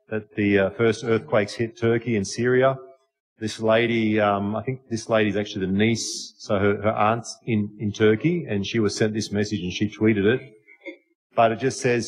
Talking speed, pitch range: 205 wpm, 105-130 Hz